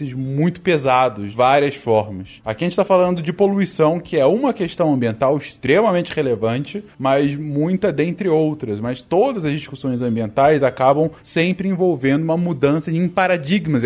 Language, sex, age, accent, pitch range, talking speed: Portuguese, male, 20-39, Brazilian, 130-180 Hz, 145 wpm